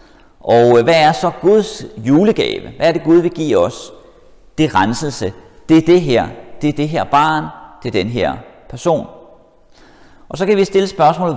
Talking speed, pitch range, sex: 190 wpm, 145-215 Hz, male